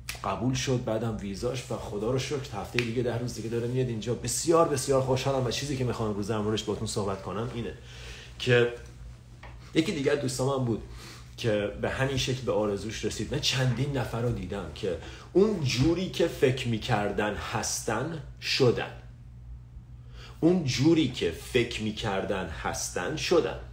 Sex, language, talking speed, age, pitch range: male, Persian, 155 wpm, 40-59, 100-130 Hz